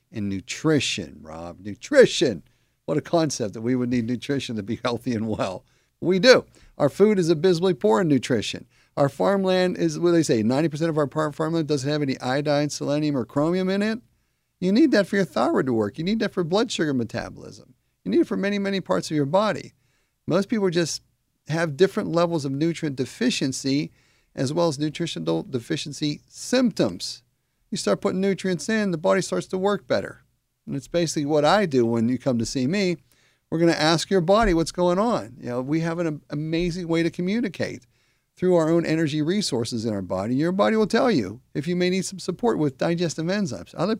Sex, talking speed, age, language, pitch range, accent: male, 205 wpm, 50-69, English, 130-185 Hz, American